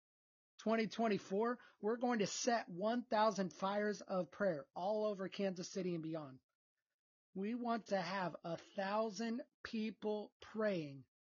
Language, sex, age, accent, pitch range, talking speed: English, male, 30-49, American, 175-210 Hz, 115 wpm